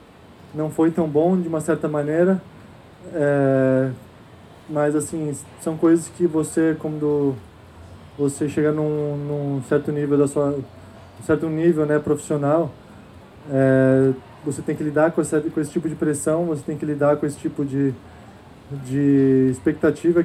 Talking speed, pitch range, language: 150 wpm, 140-160 Hz, Portuguese